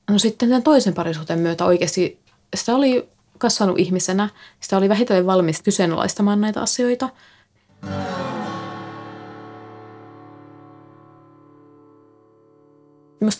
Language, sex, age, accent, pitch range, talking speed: Finnish, female, 20-39, native, 150-210 Hz, 85 wpm